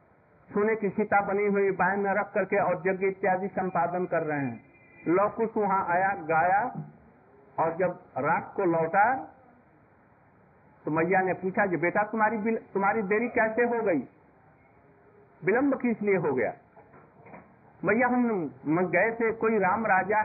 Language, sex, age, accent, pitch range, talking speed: Hindi, male, 50-69, native, 175-220 Hz, 145 wpm